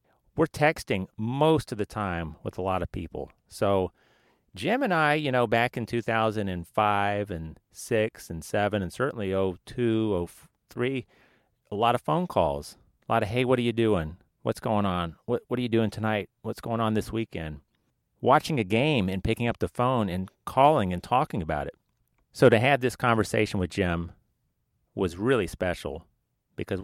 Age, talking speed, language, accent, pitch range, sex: 40-59, 175 wpm, English, American, 95-120 Hz, male